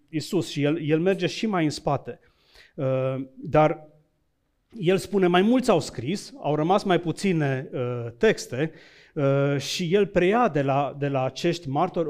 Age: 40-59